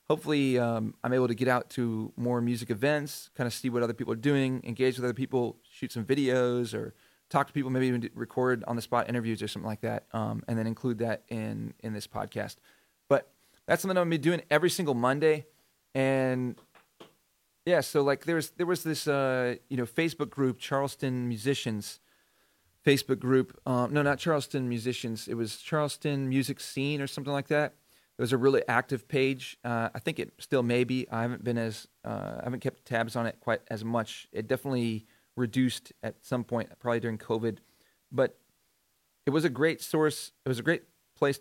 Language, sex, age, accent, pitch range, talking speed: English, male, 30-49, American, 115-140 Hz, 200 wpm